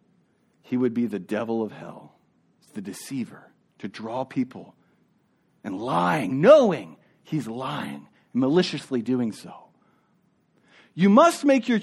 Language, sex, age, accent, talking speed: English, male, 40-59, American, 120 wpm